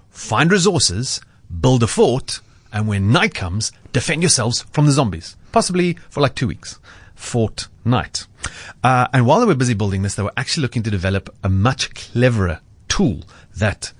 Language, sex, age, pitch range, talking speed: English, male, 30-49, 95-125 Hz, 165 wpm